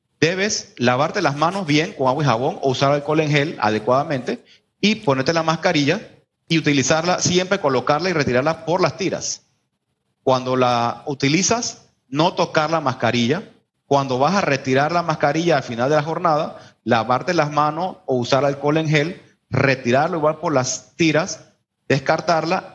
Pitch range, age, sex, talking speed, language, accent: 130-160 Hz, 30-49, male, 160 wpm, Spanish, Venezuelan